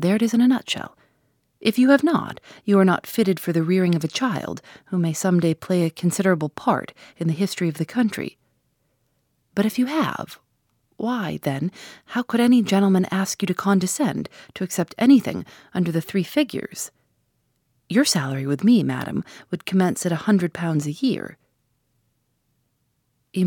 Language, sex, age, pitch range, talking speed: English, female, 30-49, 165-215 Hz, 175 wpm